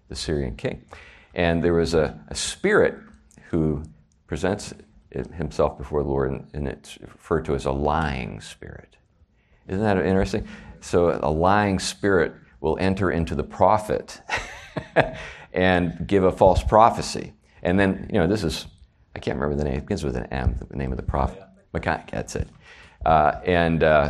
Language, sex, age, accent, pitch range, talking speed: English, male, 50-69, American, 70-85 Hz, 160 wpm